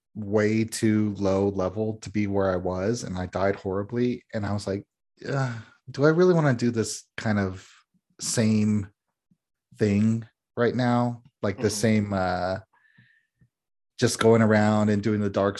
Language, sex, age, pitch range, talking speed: English, male, 30-49, 100-120 Hz, 160 wpm